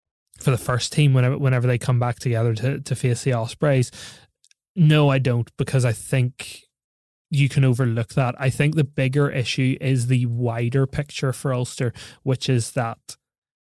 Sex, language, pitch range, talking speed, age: male, English, 120-135 Hz, 170 wpm, 20-39